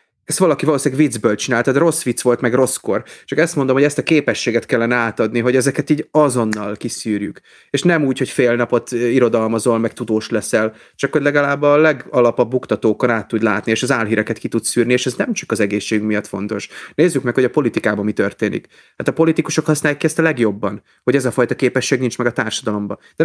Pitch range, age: 110-145 Hz, 30-49